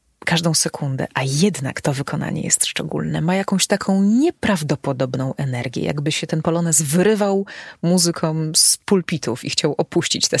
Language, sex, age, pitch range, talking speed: Polish, female, 30-49, 145-190 Hz, 145 wpm